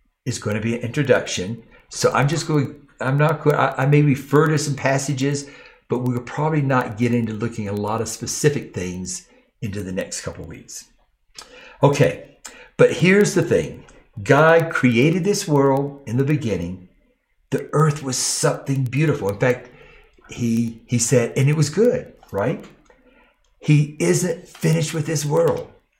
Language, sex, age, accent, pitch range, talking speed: English, male, 60-79, American, 115-150 Hz, 165 wpm